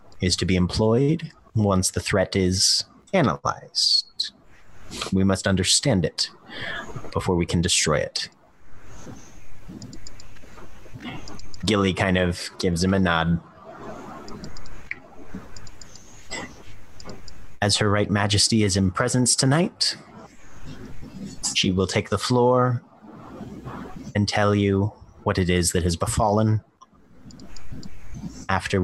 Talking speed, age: 100 wpm, 30-49